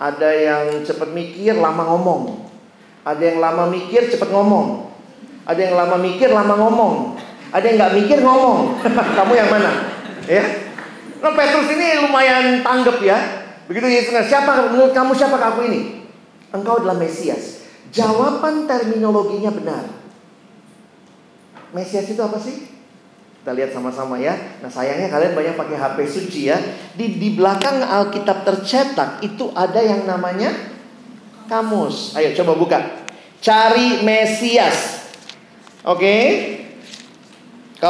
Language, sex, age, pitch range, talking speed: Indonesian, male, 40-59, 190-240 Hz, 130 wpm